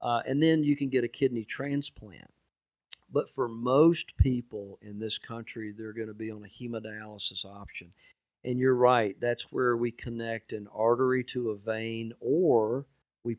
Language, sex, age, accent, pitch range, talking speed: English, male, 50-69, American, 110-130 Hz, 170 wpm